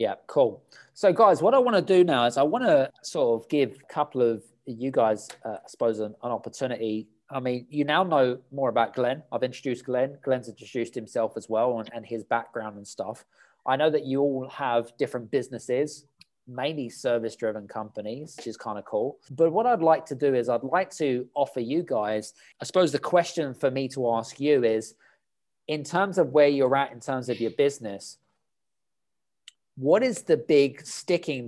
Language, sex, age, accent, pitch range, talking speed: English, male, 20-39, British, 125-155 Hz, 200 wpm